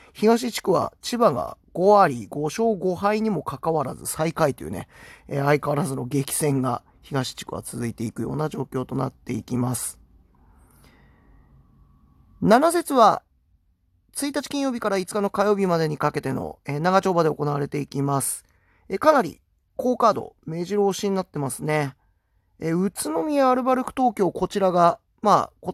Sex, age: male, 40-59